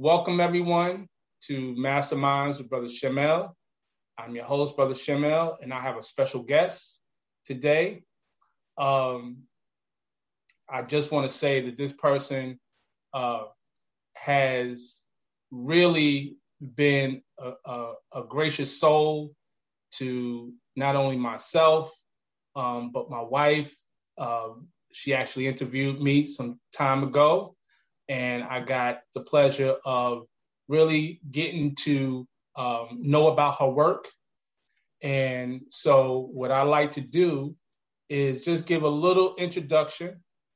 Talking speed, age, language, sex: 120 wpm, 20-39, English, male